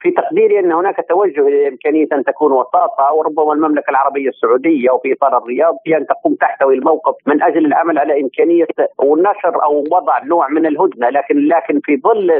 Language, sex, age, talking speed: Arabic, male, 50-69, 175 wpm